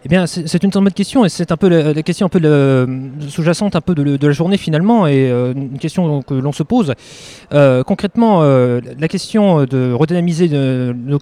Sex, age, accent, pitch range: male, 20-39, French, 140-180 Hz